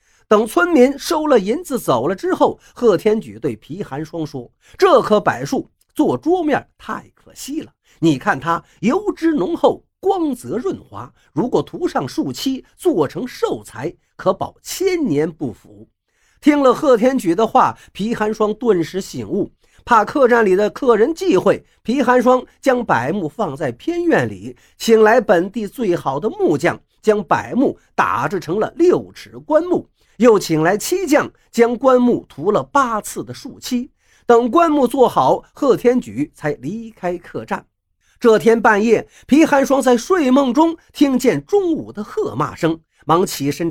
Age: 50-69